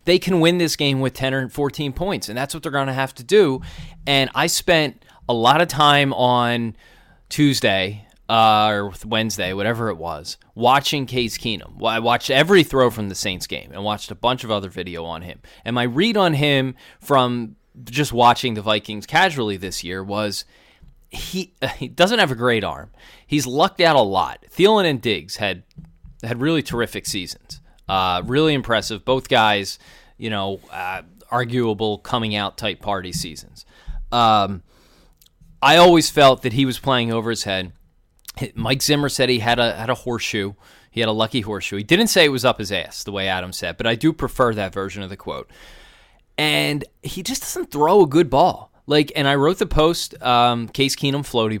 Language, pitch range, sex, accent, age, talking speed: English, 105-140 Hz, male, American, 20-39, 195 wpm